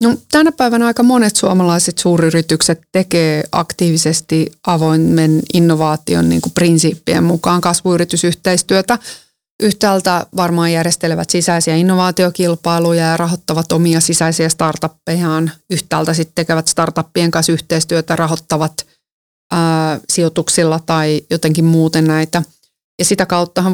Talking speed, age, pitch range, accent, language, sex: 105 wpm, 30-49, 160-185 Hz, native, Finnish, female